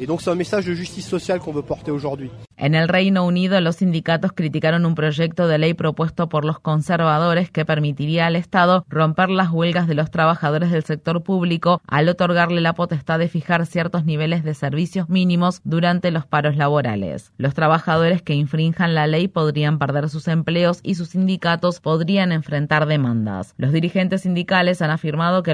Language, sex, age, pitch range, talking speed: Spanish, female, 20-39, 155-175 Hz, 155 wpm